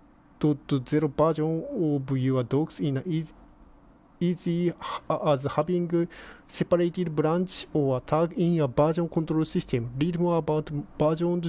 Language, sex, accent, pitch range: Japanese, male, native, 145-170 Hz